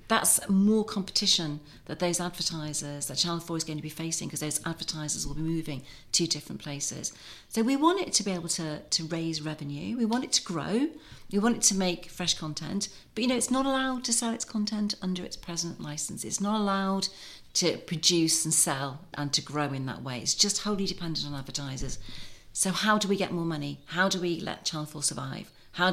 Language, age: English, 40-59